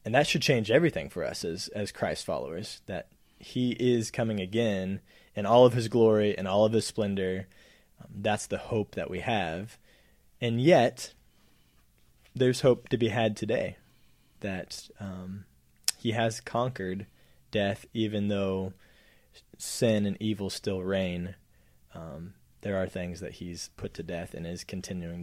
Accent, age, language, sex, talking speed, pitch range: American, 20-39, English, male, 155 wpm, 95-120 Hz